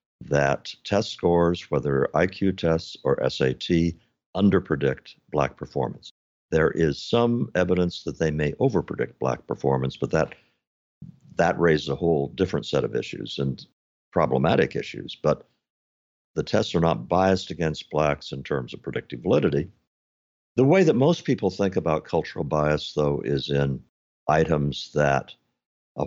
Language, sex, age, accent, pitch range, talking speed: English, male, 60-79, American, 65-85 Hz, 145 wpm